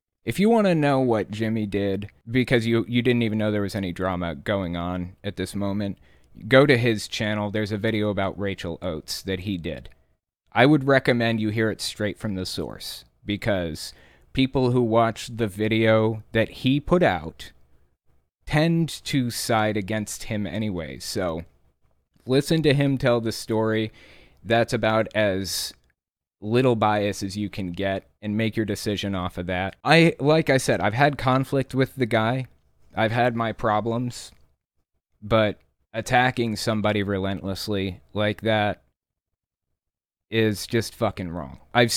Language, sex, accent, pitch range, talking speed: English, male, American, 90-115 Hz, 155 wpm